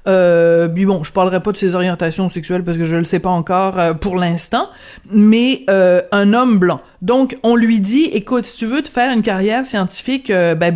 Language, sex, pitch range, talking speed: French, female, 185-235 Hz, 225 wpm